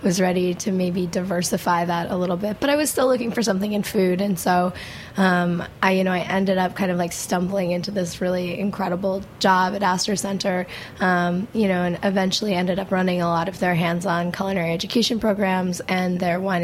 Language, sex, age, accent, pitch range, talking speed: English, female, 20-39, American, 175-200 Hz, 210 wpm